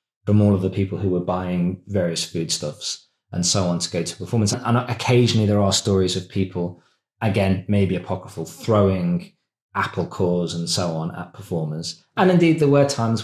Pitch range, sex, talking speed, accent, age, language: 95-120 Hz, male, 180 wpm, British, 20-39, English